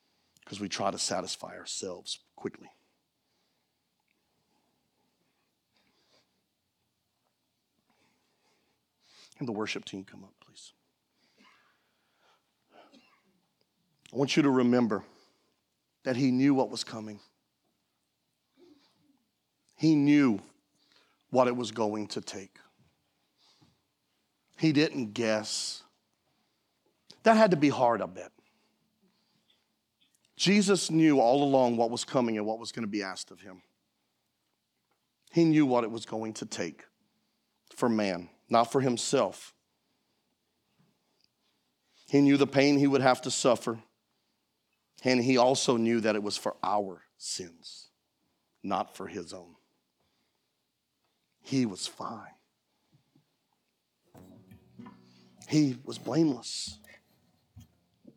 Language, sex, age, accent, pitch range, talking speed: English, male, 40-59, American, 110-145 Hz, 105 wpm